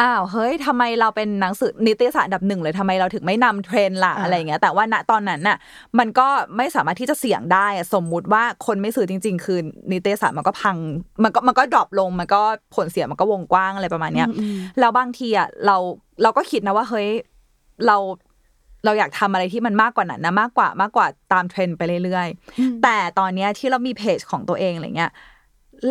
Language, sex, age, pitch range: Thai, female, 20-39, 185-230 Hz